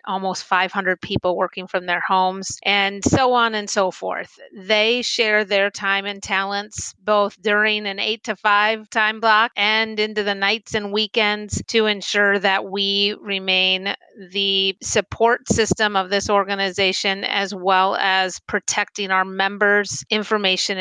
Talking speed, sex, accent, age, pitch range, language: 145 wpm, female, American, 30-49, 190-215 Hz, English